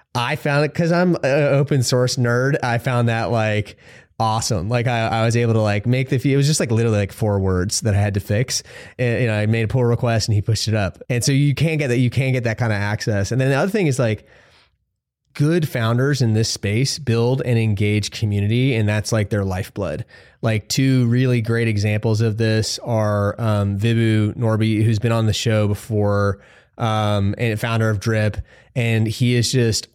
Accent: American